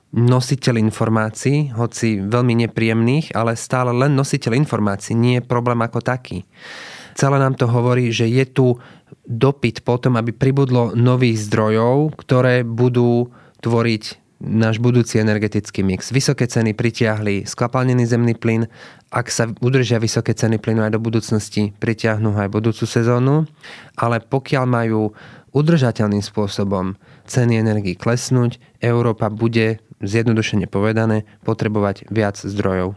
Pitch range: 110-125 Hz